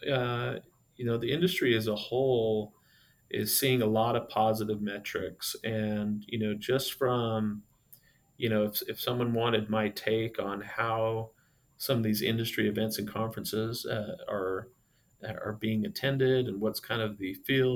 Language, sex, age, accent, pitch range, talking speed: English, male, 30-49, American, 110-125 Hz, 160 wpm